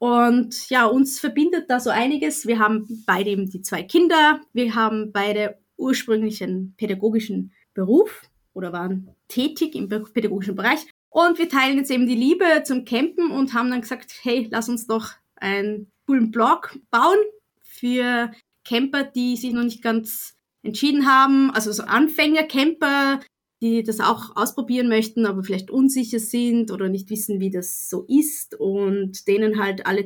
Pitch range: 210-265 Hz